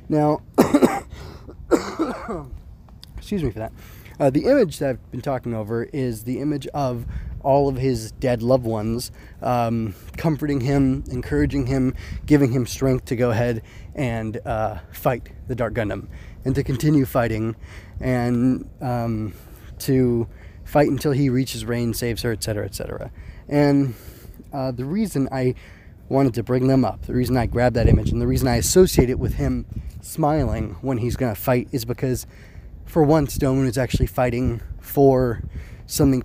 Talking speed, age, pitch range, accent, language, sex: 160 wpm, 20-39, 110-135 Hz, American, English, male